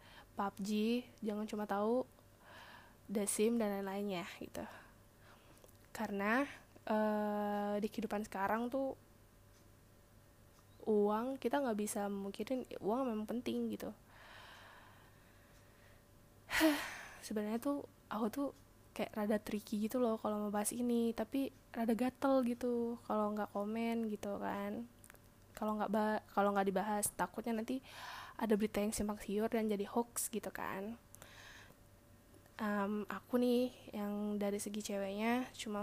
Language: Indonesian